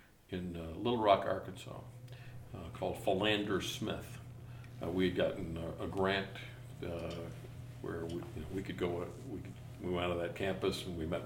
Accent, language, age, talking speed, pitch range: American, English, 60-79, 180 wpm, 95-125 Hz